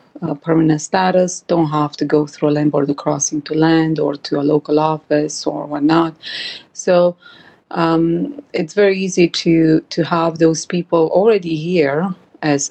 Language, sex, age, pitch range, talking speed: English, female, 30-49, 150-175 Hz, 160 wpm